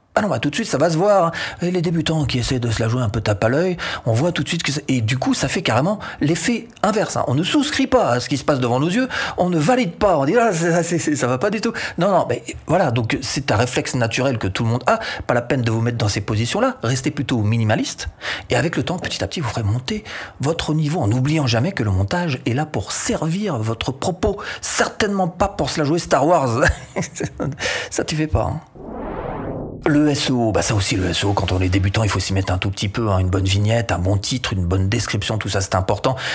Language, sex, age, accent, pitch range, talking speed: French, male, 40-59, French, 110-155 Hz, 265 wpm